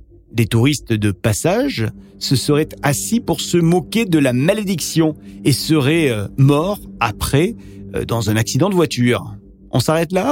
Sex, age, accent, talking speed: male, 40-59, French, 155 wpm